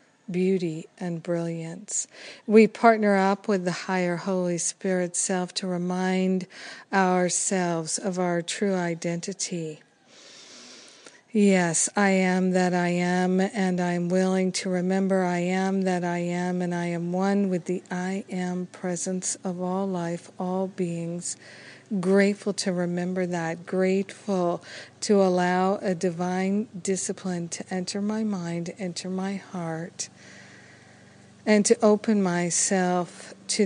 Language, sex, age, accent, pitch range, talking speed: English, female, 50-69, American, 180-195 Hz, 125 wpm